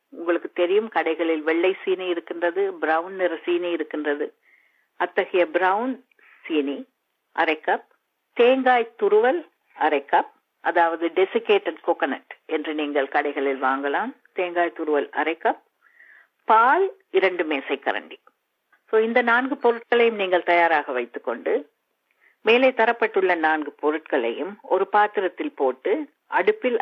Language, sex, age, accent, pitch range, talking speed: Tamil, female, 50-69, native, 165-255 Hz, 105 wpm